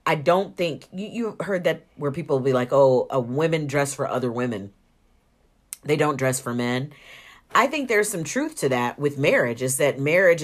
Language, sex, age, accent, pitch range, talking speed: English, female, 40-59, American, 125-155 Hz, 200 wpm